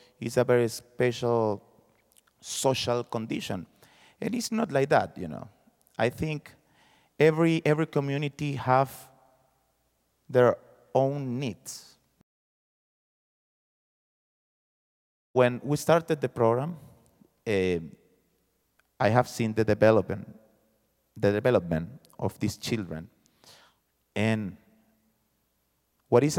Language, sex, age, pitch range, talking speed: English, male, 30-49, 110-145 Hz, 95 wpm